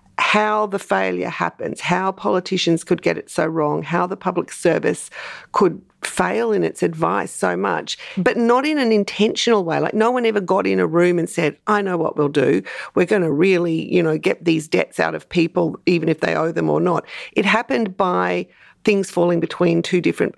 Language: English